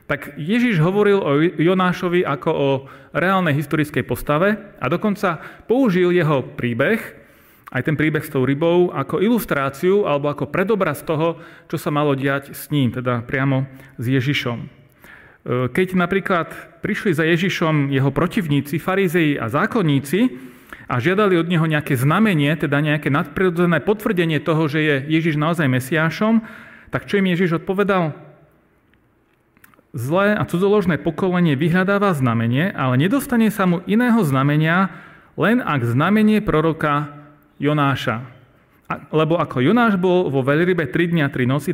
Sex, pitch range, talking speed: male, 140-180 Hz, 140 wpm